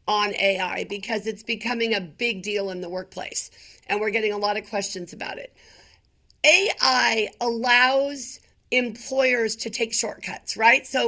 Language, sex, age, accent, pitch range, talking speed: English, female, 50-69, American, 205-255 Hz, 150 wpm